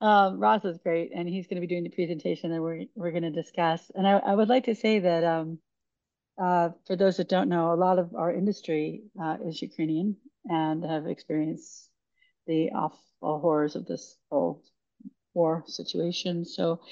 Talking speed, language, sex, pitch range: 190 wpm, English, female, 160-180 Hz